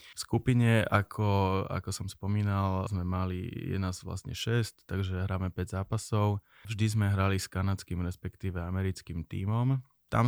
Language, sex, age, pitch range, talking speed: Slovak, male, 20-39, 95-105 Hz, 145 wpm